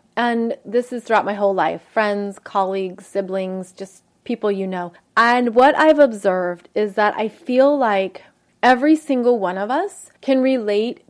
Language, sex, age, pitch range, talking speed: English, female, 30-49, 205-260 Hz, 160 wpm